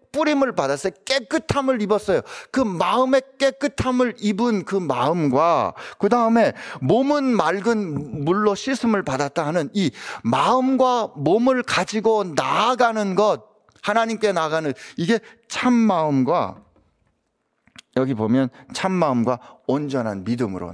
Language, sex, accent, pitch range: Korean, male, native, 130-200 Hz